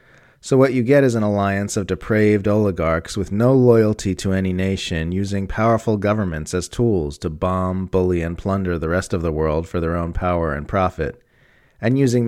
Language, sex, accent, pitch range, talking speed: English, male, American, 85-105 Hz, 190 wpm